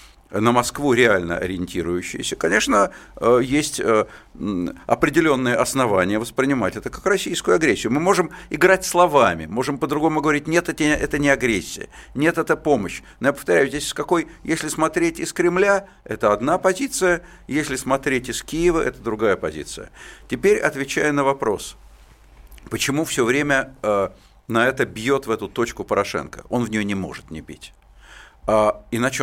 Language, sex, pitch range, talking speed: Russian, male, 110-155 Hz, 140 wpm